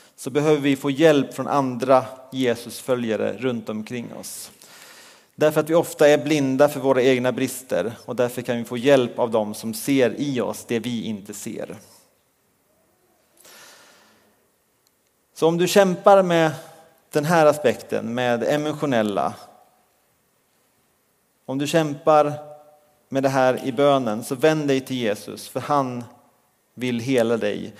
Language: Swedish